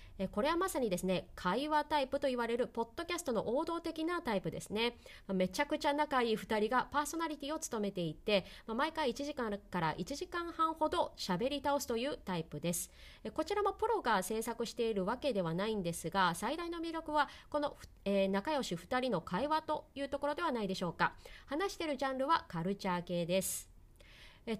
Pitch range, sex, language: 195-300 Hz, female, Japanese